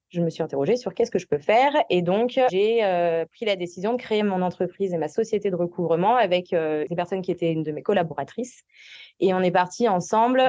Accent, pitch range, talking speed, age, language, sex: French, 175-220 Hz, 235 wpm, 20-39, French, female